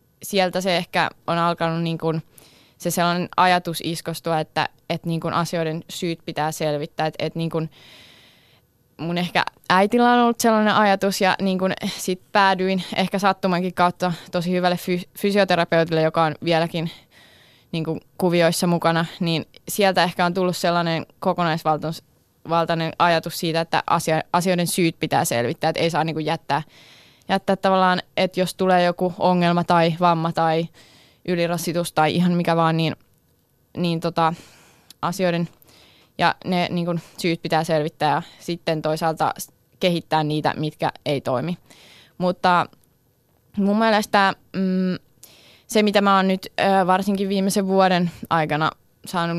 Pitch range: 160-185 Hz